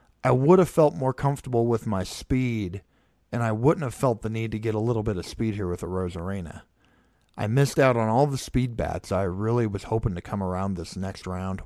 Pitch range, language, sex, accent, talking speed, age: 95-125 Hz, English, male, American, 230 wpm, 40-59